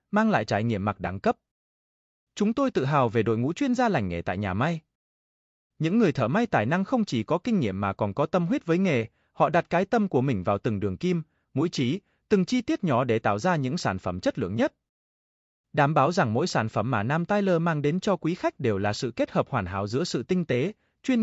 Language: Vietnamese